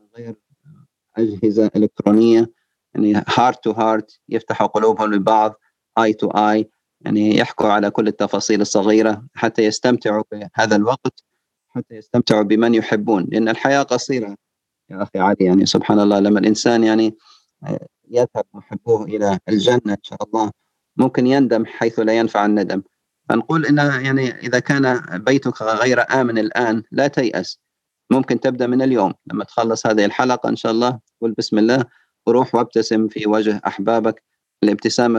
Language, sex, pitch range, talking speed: Arabic, male, 110-120 Hz, 140 wpm